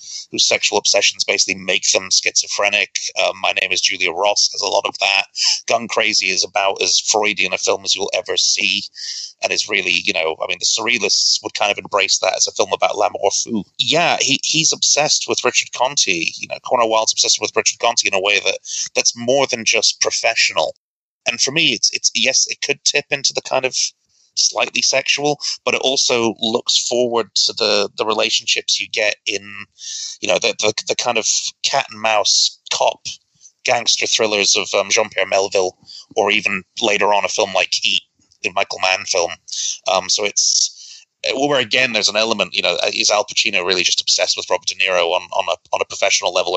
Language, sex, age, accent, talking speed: English, male, 30-49, British, 200 wpm